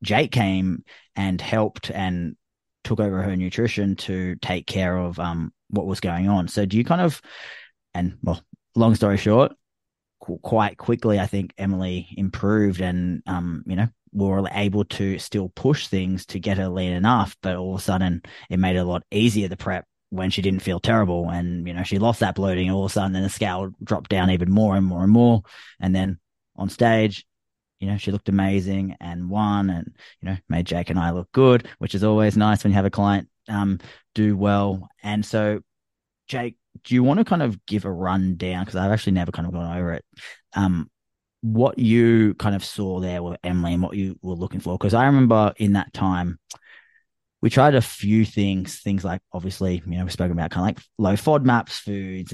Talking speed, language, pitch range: 210 wpm, English, 90-105 Hz